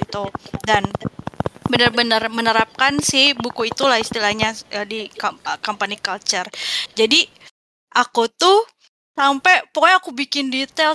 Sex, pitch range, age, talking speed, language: female, 245-370 Hz, 20-39, 110 wpm, Indonesian